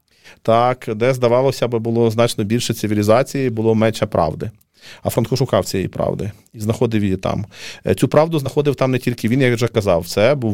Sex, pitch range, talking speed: male, 110-130 Hz, 180 wpm